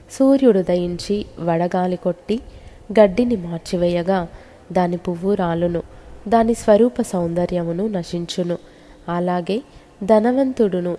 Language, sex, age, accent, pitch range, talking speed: Telugu, female, 20-39, native, 175-210 Hz, 75 wpm